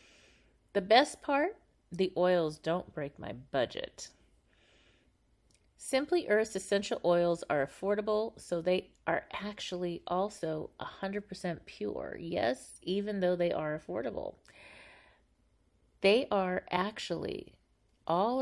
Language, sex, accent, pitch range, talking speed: English, female, American, 170-210 Hz, 105 wpm